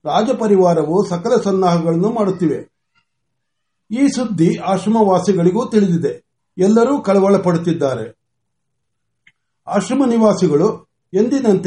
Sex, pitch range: male, 175-235 Hz